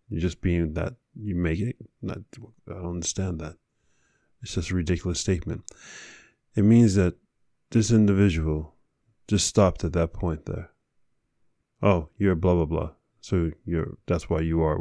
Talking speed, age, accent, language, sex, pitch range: 160 wpm, 20-39, American, English, male, 85-105 Hz